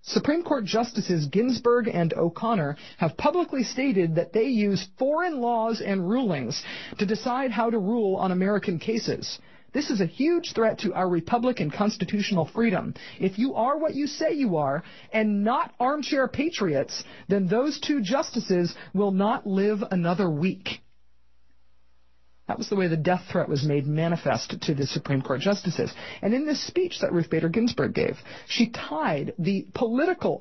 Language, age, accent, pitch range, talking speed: English, 40-59, American, 165-225 Hz, 165 wpm